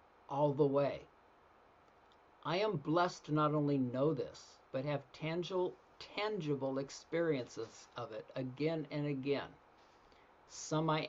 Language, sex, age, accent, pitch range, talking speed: English, male, 50-69, American, 135-170 Hz, 125 wpm